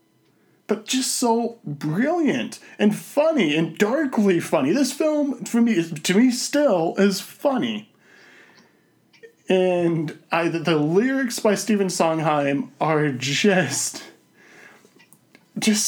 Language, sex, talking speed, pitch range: English, male, 110 wpm, 155-220 Hz